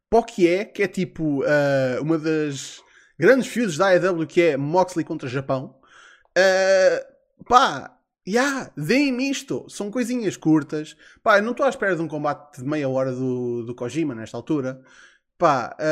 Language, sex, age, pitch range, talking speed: Portuguese, male, 20-39, 140-185 Hz, 155 wpm